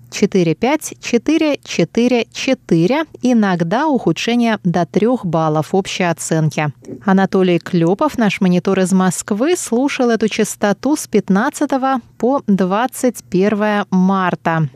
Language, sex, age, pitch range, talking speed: Russian, female, 20-39, 180-235 Hz, 90 wpm